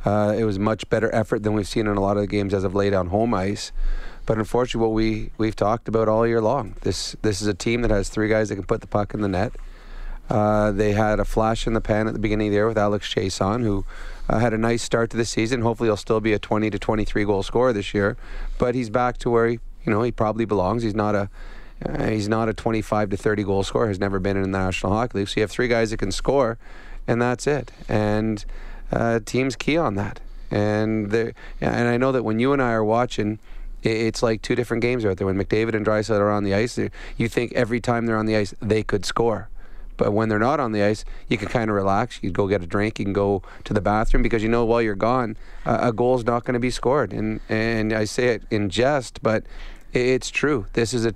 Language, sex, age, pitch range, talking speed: English, male, 30-49, 105-120 Hz, 260 wpm